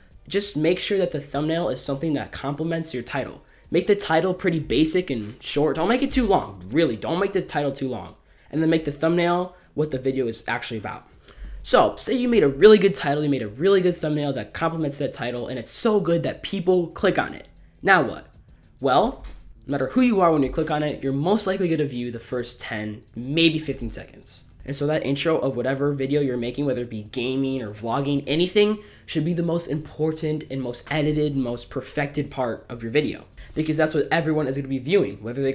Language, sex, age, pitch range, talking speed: English, male, 10-29, 130-170 Hz, 230 wpm